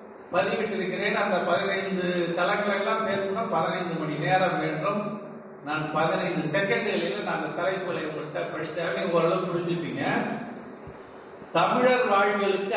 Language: Tamil